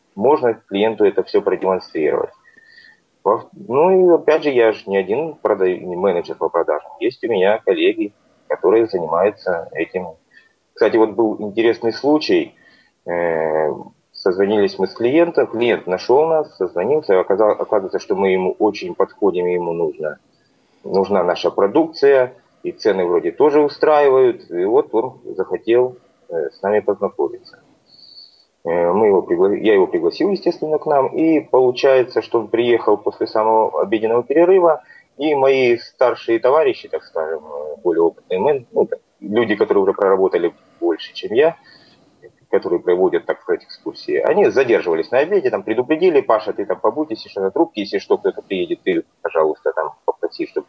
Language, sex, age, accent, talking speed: Russian, male, 30-49, native, 150 wpm